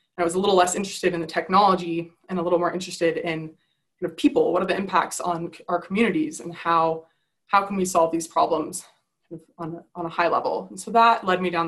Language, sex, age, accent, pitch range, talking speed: English, female, 20-39, American, 165-185 Hz, 215 wpm